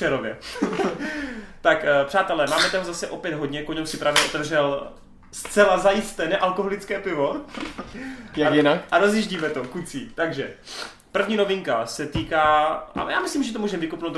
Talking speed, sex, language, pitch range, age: 140 wpm, male, Czech, 135-185 Hz, 20-39